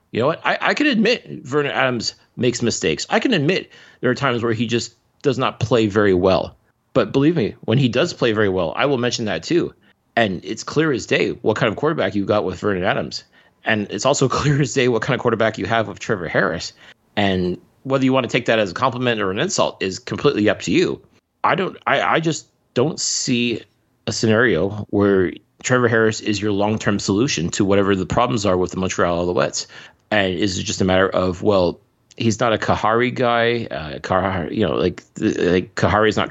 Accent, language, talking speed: American, English, 215 wpm